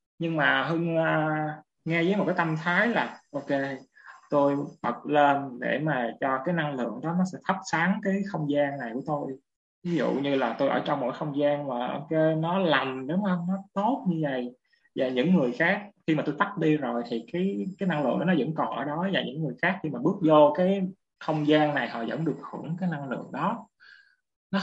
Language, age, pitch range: Vietnamese, 20-39, 140-180 Hz